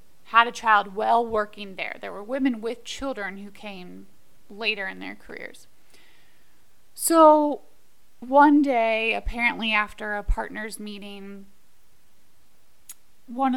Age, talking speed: 20-39, 115 wpm